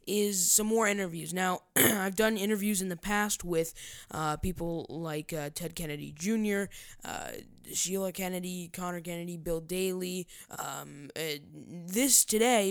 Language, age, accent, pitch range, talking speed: English, 10-29, American, 165-200 Hz, 140 wpm